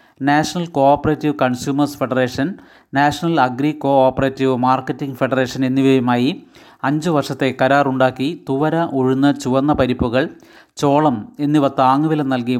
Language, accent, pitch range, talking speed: Malayalam, native, 130-145 Hz, 105 wpm